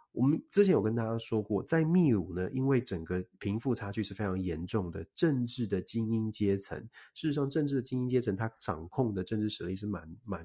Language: Chinese